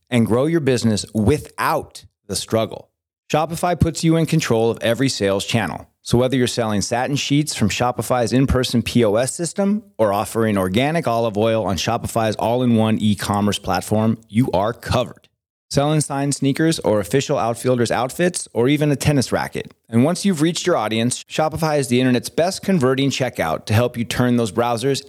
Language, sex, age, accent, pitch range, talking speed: English, male, 30-49, American, 110-140 Hz, 170 wpm